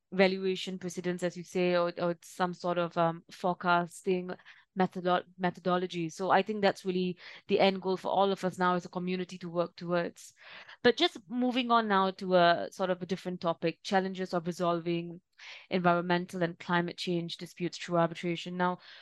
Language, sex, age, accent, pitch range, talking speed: English, female, 20-39, Indian, 170-190 Hz, 175 wpm